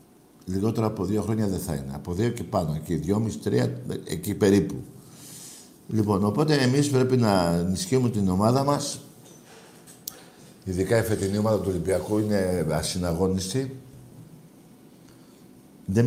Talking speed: 125 wpm